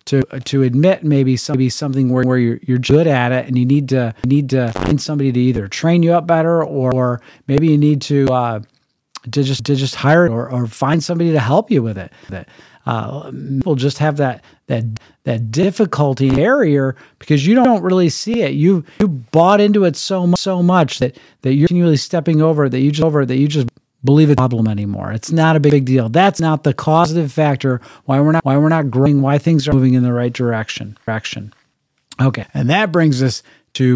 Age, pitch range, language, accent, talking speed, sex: 40-59, 125-155 Hz, English, American, 215 wpm, male